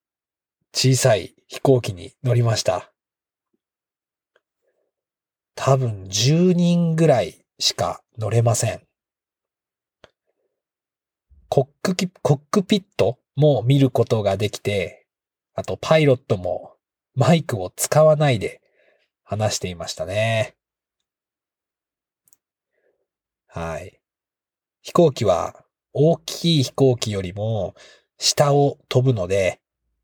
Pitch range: 115-145 Hz